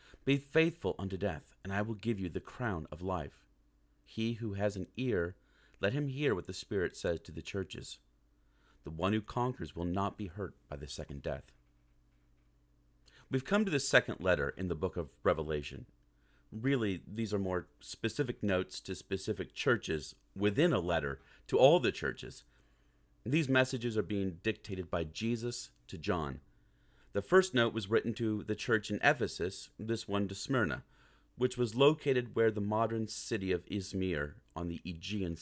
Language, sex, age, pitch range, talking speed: English, male, 40-59, 75-115 Hz, 175 wpm